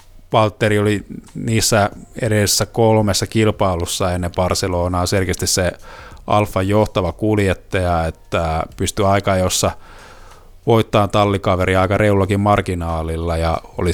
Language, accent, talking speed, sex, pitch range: Finnish, native, 105 wpm, male, 95-115 Hz